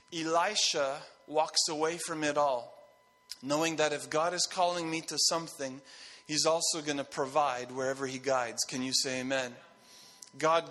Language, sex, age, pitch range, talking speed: English, male, 30-49, 145-185 Hz, 155 wpm